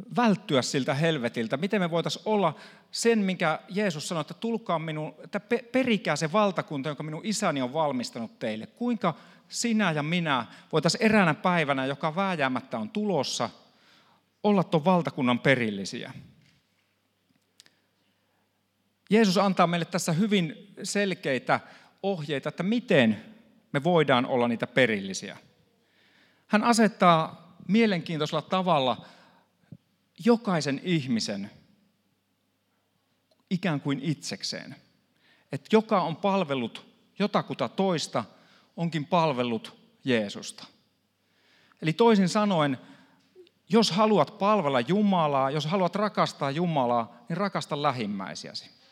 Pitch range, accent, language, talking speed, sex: 135-205 Hz, native, Finnish, 105 wpm, male